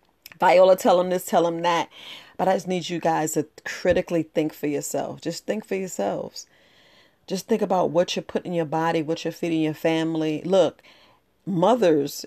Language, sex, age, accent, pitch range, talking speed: English, female, 40-59, American, 150-190 Hz, 185 wpm